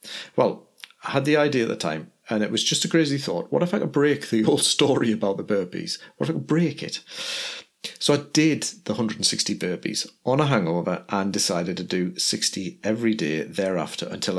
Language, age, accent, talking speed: English, 40-59, British, 210 wpm